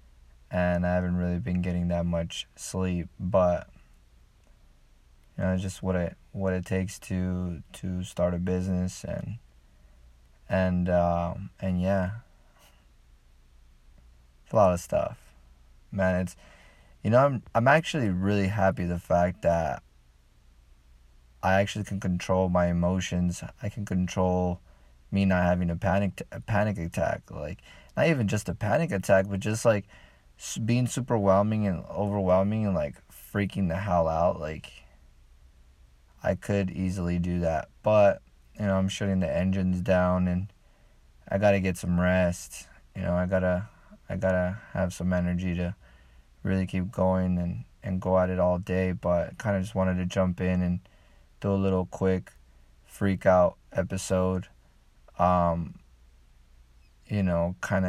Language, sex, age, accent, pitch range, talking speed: English, male, 20-39, American, 65-95 Hz, 155 wpm